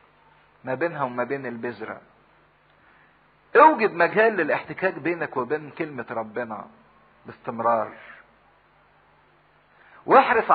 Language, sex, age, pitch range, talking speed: English, male, 50-69, 120-160 Hz, 80 wpm